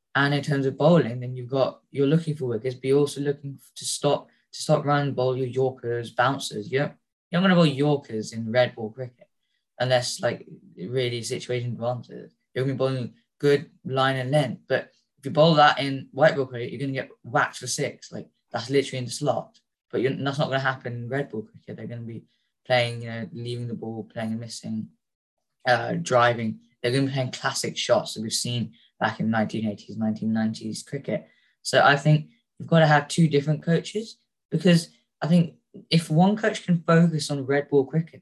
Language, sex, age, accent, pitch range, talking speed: English, female, 10-29, British, 125-150 Hz, 215 wpm